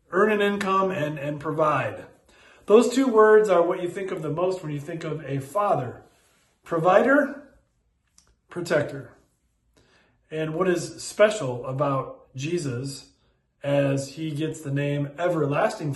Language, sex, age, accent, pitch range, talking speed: English, male, 40-59, American, 155-220 Hz, 135 wpm